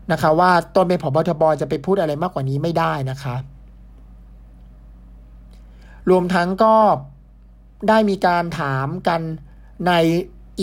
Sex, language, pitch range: male, Thai, 140-185 Hz